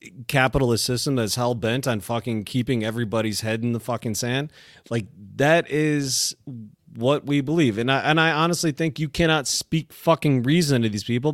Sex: male